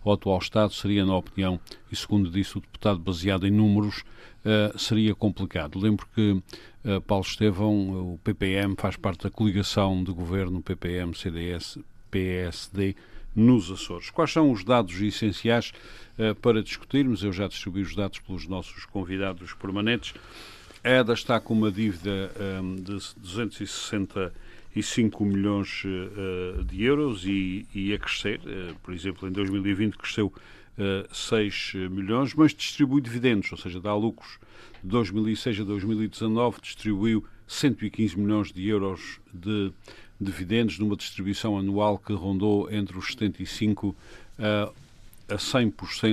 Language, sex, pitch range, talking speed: Portuguese, male, 95-110 Hz, 135 wpm